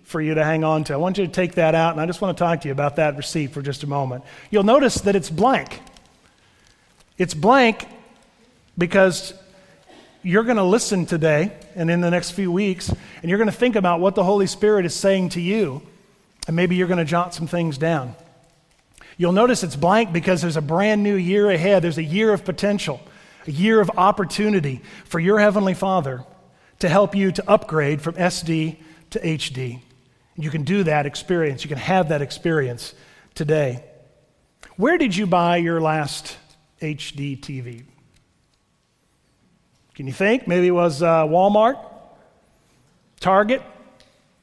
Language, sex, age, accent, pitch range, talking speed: English, male, 40-59, American, 155-200 Hz, 175 wpm